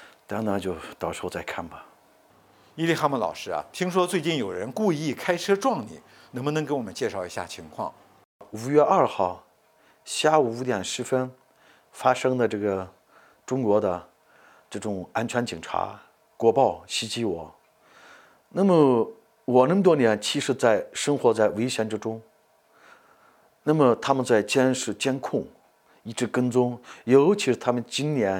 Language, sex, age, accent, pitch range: English, male, 50-69, Chinese, 110-155 Hz